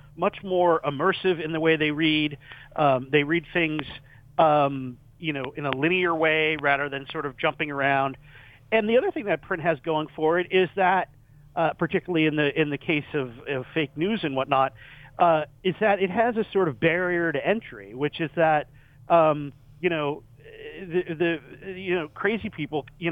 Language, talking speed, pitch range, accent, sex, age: English, 190 wpm, 140-175 Hz, American, male, 50-69